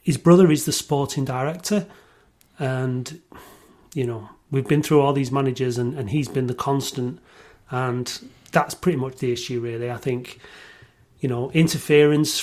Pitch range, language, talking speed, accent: 130-155 Hz, English, 160 wpm, British